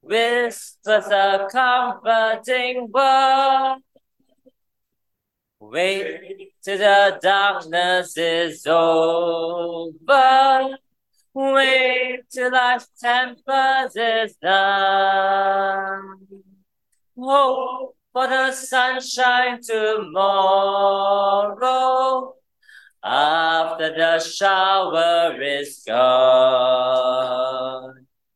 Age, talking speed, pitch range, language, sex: 30-49, 55 wpm, 190-260 Hz, English, male